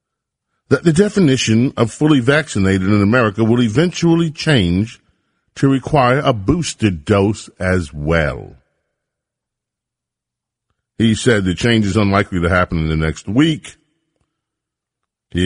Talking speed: 120 wpm